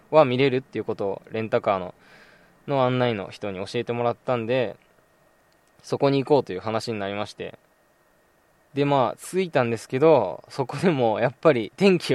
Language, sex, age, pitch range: Japanese, male, 20-39, 120-160 Hz